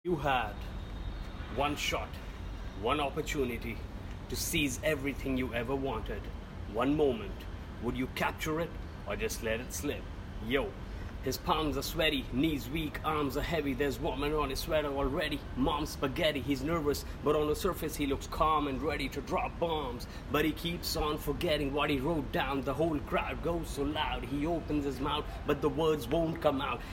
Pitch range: 120-150 Hz